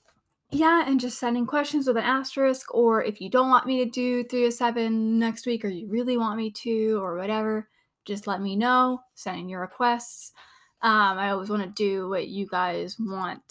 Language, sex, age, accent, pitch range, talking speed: English, female, 10-29, American, 200-245 Hz, 210 wpm